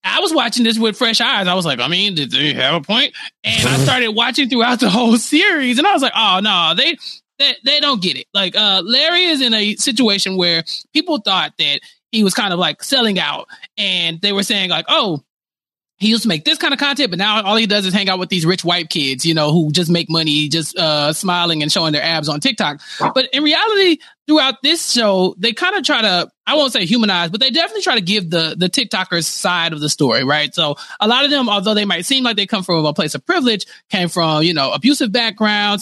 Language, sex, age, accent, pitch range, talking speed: English, male, 20-39, American, 170-245 Hz, 250 wpm